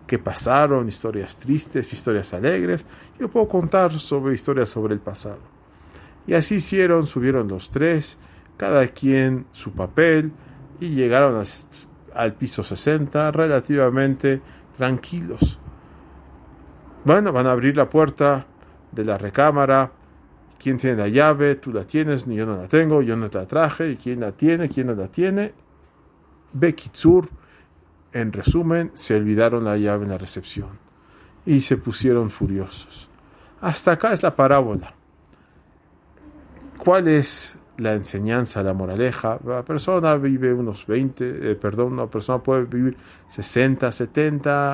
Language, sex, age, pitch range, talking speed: English, male, 50-69, 105-150 Hz, 140 wpm